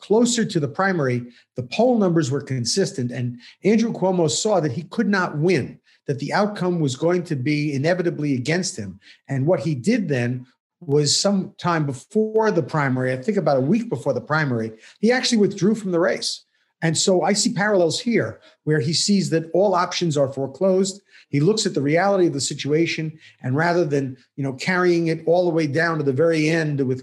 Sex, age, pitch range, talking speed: male, 50-69, 145-190 Hz, 200 wpm